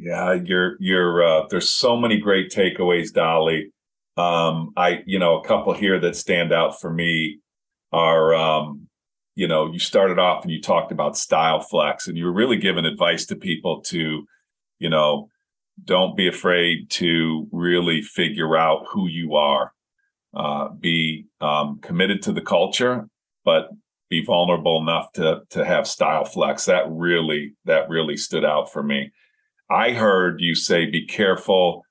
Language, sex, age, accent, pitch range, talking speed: English, male, 40-59, American, 80-95 Hz, 160 wpm